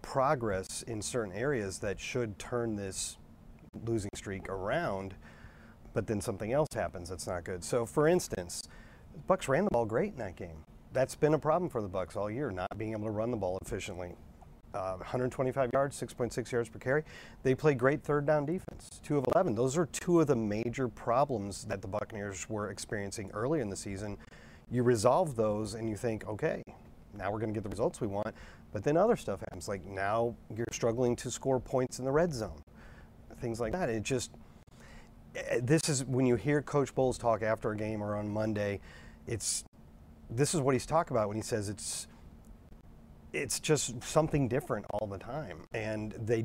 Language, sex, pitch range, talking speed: English, male, 100-130 Hz, 195 wpm